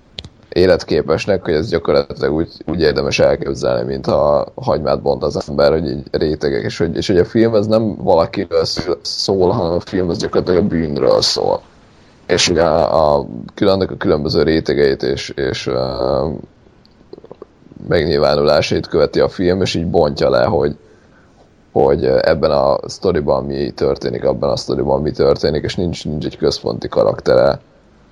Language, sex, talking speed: Hungarian, male, 150 wpm